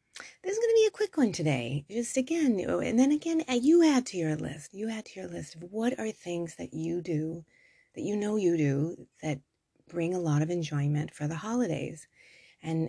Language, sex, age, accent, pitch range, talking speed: English, female, 30-49, American, 160-195 Hz, 215 wpm